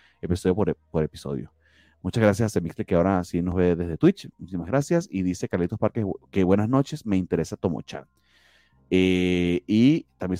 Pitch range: 85-115 Hz